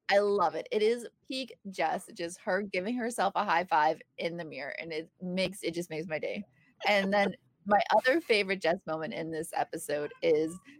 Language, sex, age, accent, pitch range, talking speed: English, female, 20-39, American, 170-260 Hz, 200 wpm